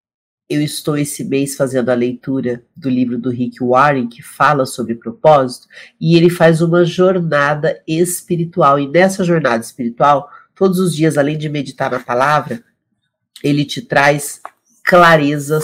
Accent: Brazilian